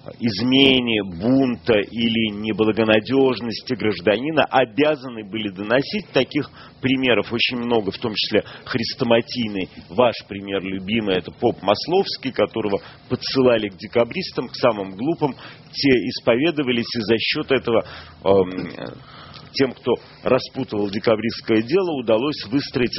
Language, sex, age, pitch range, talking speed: Russian, male, 40-59, 105-140 Hz, 110 wpm